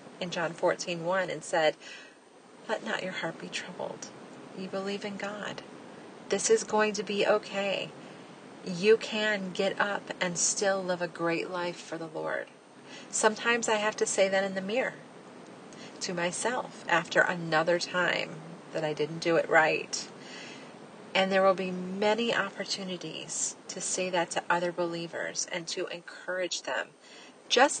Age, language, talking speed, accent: 30-49, English, 155 wpm, American